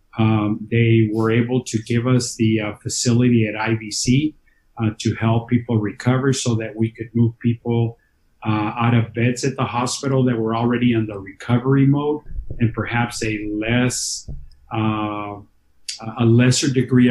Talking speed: 160 wpm